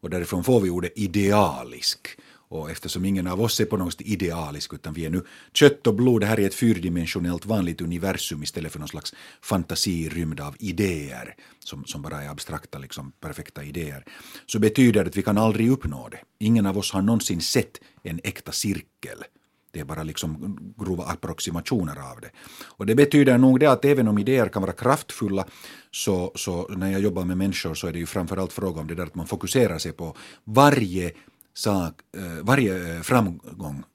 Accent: native